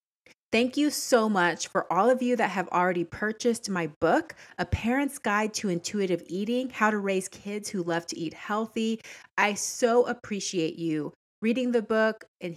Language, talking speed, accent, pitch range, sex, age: English, 175 wpm, American, 165-215 Hz, female, 30-49